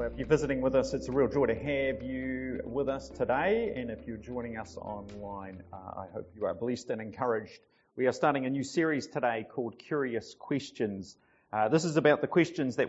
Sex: male